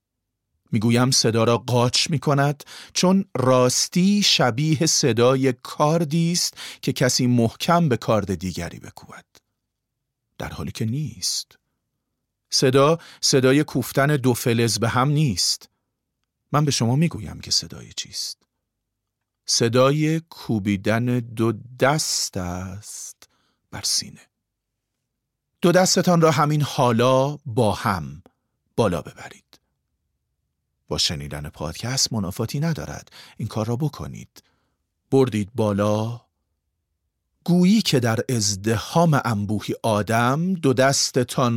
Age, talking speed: 40-59, 105 wpm